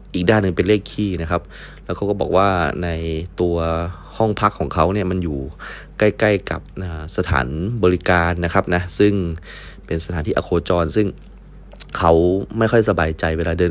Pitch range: 85-115 Hz